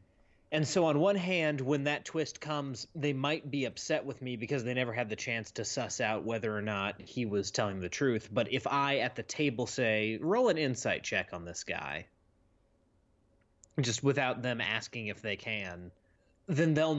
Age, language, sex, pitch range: 30-49, English, male, 105-140 Hz